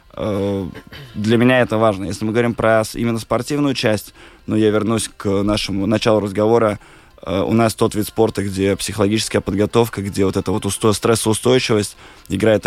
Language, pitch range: Russian, 100-110 Hz